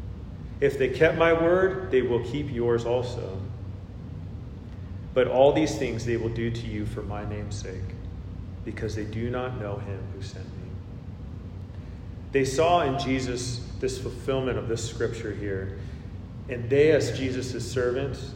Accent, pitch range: American, 100-130 Hz